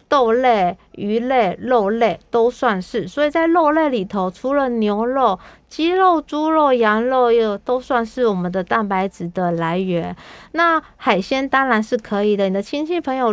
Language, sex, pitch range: Chinese, female, 200-255 Hz